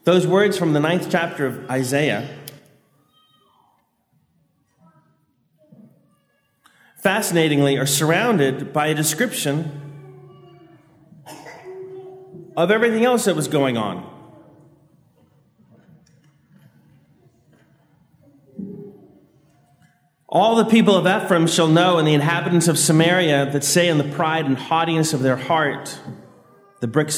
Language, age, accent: English, 40-59, American